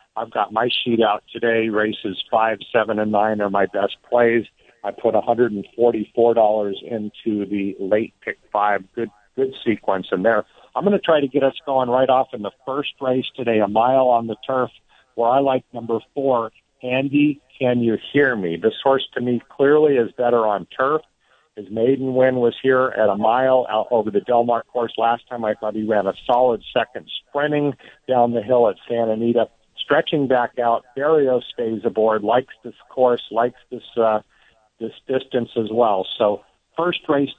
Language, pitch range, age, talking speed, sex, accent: English, 110-130 Hz, 50-69, 185 wpm, male, American